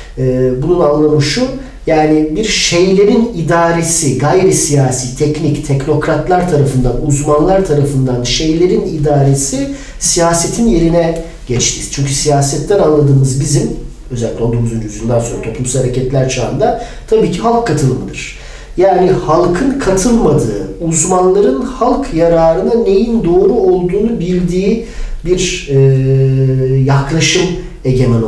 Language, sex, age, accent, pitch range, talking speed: Turkish, male, 40-59, native, 135-190 Hz, 105 wpm